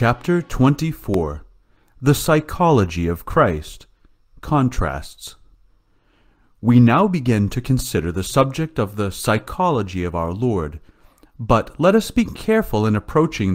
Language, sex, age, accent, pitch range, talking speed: English, male, 40-59, American, 90-125 Hz, 120 wpm